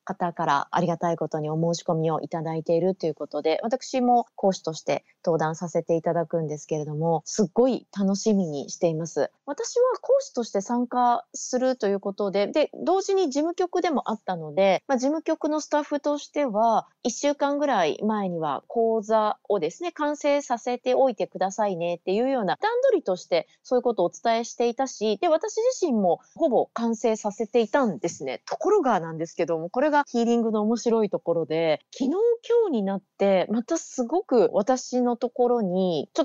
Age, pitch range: 30-49, 180-275 Hz